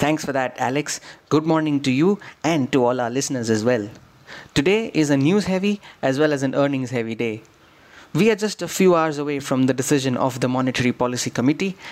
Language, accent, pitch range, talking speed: English, Indian, 125-155 Hz, 210 wpm